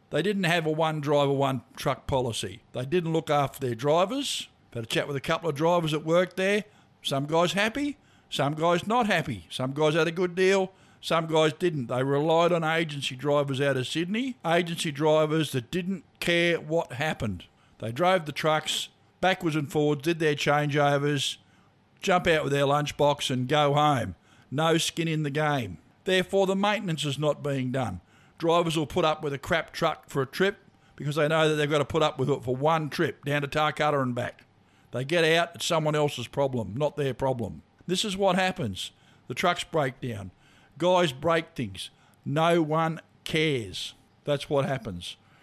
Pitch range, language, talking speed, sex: 135-170 Hz, English, 190 wpm, male